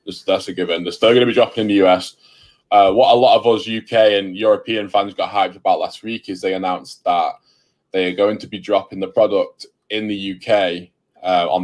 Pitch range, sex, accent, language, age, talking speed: 95-115 Hz, male, British, English, 10-29, 225 wpm